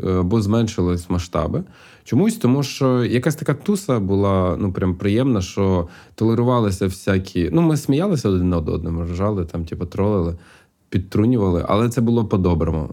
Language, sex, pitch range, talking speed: Ukrainian, male, 90-120 Hz, 145 wpm